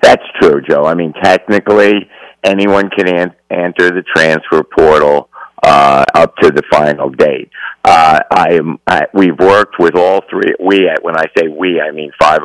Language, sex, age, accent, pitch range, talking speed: English, male, 50-69, American, 75-90 Hz, 170 wpm